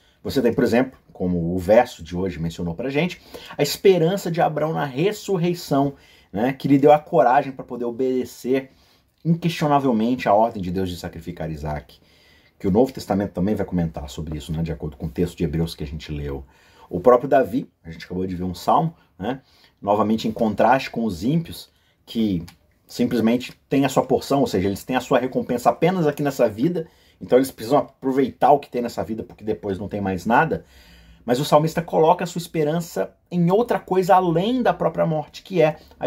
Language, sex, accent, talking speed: Portuguese, male, Brazilian, 205 wpm